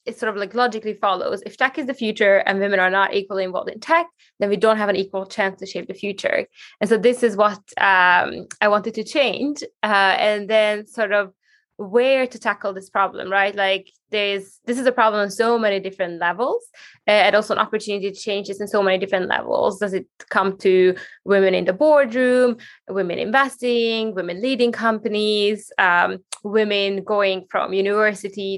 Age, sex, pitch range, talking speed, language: 20-39, female, 195-240 Hz, 195 wpm, English